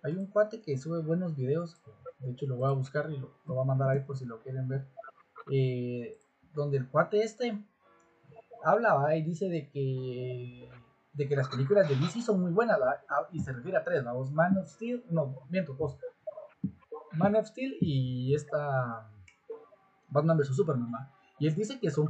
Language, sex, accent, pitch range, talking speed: Spanish, male, Mexican, 135-195 Hz, 185 wpm